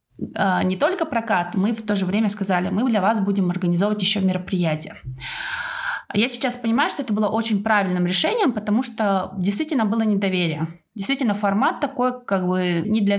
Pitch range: 185-230 Hz